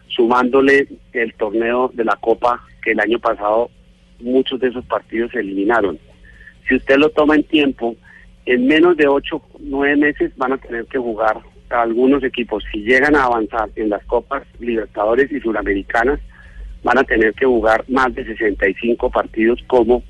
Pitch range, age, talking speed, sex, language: 110-140 Hz, 40-59, 170 wpm, male, Spanish